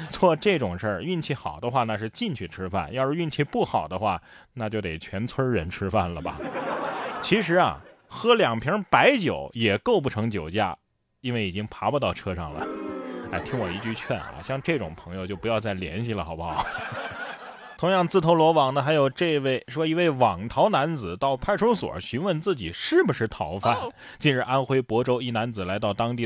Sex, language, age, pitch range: male, Chinese, 20-39, 105-150 Hz